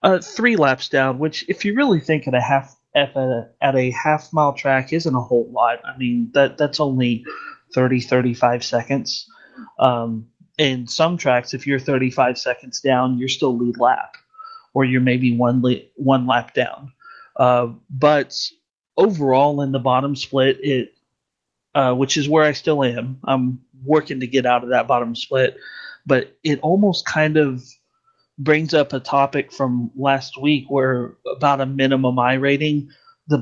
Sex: male